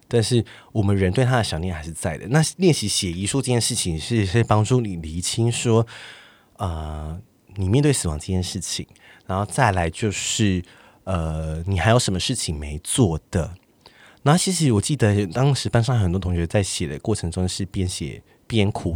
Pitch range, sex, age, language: 90-120 Hz, male, 20-39, Chinese